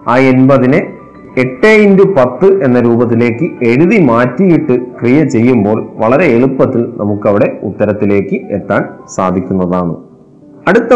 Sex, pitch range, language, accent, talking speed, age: male, 115-170 Hz, Malayalam, native, 100 wpm, 30-49